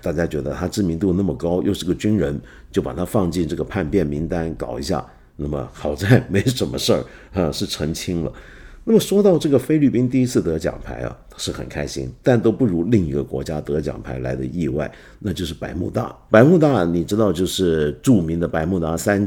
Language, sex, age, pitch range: Chinese, male, 50-69, 75-105 Hz